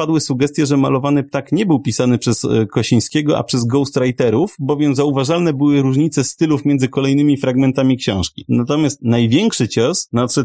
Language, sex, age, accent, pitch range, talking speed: English, male, 30-49, Polish, 120-145 Hz, 150 wpm